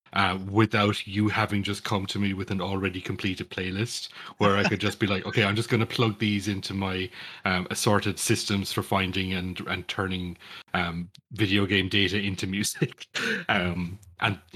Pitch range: 90-105 Hz